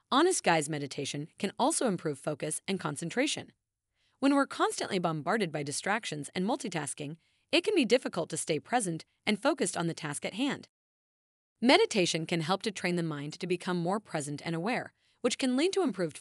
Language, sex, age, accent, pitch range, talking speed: English, female, 30-49, American, 160-240 Hz, 180 wpm